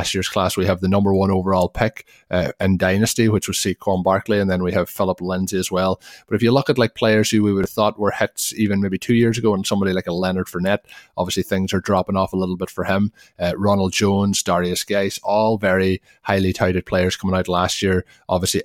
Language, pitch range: English, 95-105 Hz